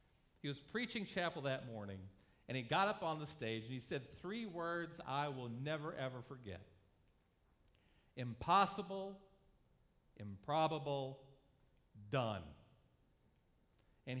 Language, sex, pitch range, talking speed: English, male, 130-215 Hz, 115 wpm